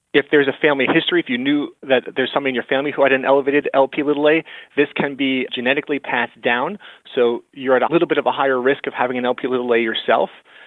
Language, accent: English, American